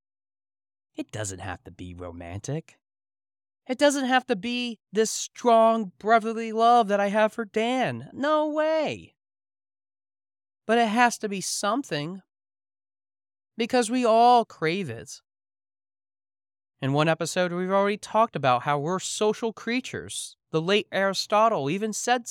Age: 30-49